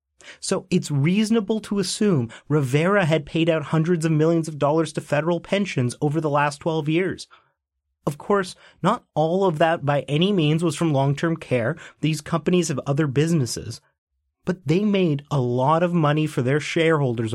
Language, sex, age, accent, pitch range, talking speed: English, male, 30-49, American, 135-170 Hz, 175 wpm